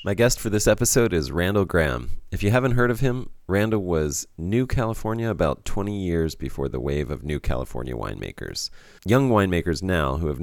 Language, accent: English, American